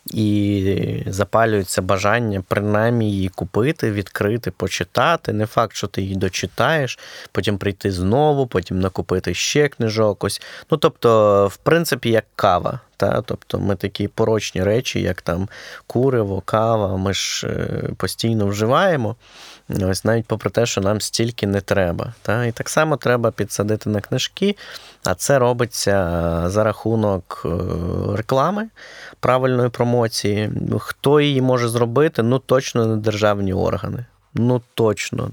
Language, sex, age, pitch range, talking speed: Ukrainian, male, 20-39, 100-120 Hz, 130 wpm